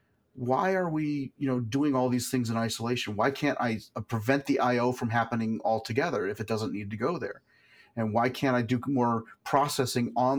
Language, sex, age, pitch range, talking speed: English, male, 40-59, 115-140 Hz, 200 wpm